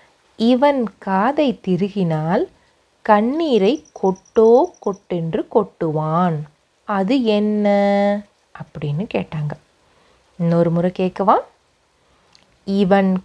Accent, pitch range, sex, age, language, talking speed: native, 170-235 Hz, female, 30-49, Tamil, 70 wpm